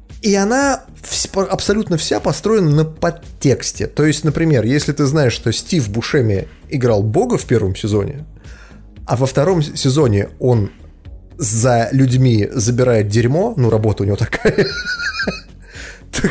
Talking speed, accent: 130 wpm, native